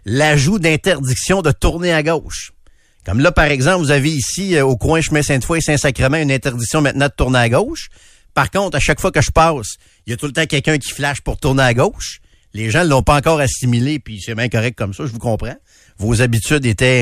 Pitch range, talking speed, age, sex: 105-150 Hz, 235 wpm, 50-69, male